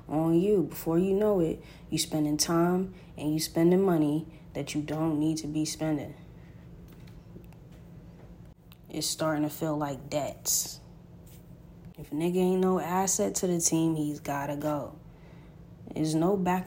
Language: English